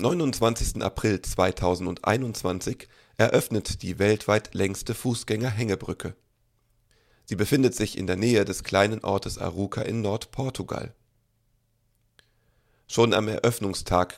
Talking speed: 95 wpm